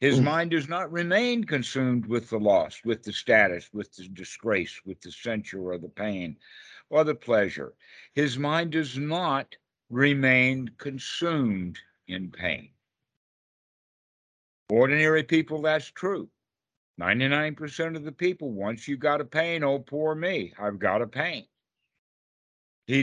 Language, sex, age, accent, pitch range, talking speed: English, male, 60-79, American, 115-155 Hz, 140 wpm